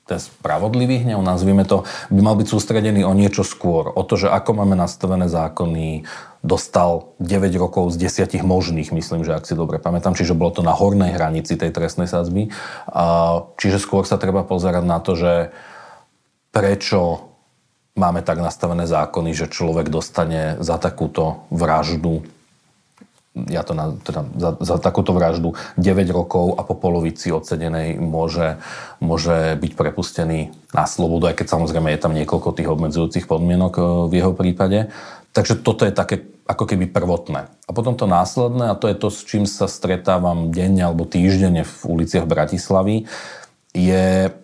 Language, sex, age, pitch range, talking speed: Slovak, male, 40-59, 85-100 Hz, 160 wpm